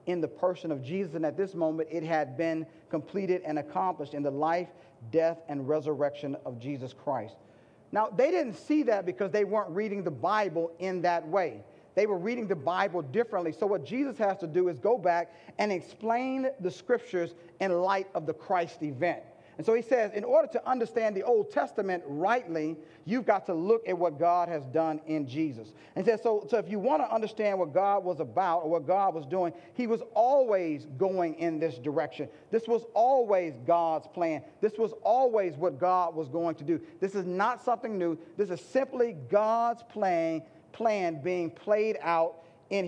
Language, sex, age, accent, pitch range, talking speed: English, male, 40-59, American, 165-225 Hz, 195 wpm